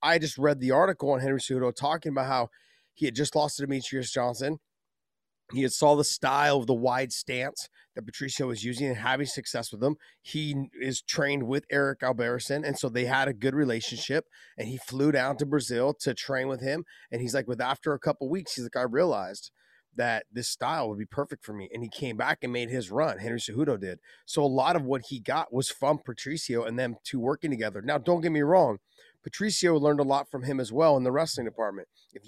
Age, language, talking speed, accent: 30-49, English, 230 wpm, American